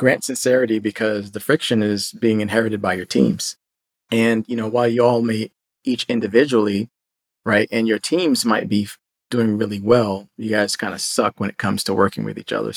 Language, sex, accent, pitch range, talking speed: English, male, American, 105-120 Hz, 195 wpm